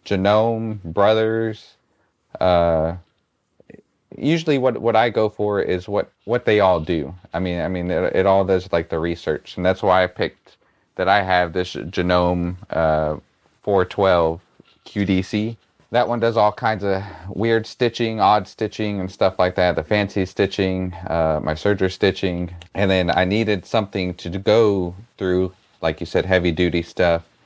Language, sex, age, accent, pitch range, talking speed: English, male, 30-49, American, 80-95 Hz, 160 wpm